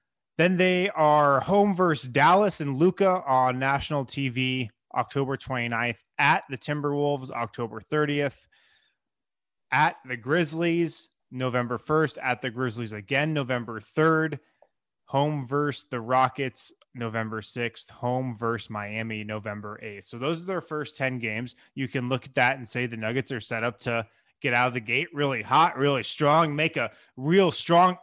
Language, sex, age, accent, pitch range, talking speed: English, male, 20-39, American, 115-160 Hz, 155 wpm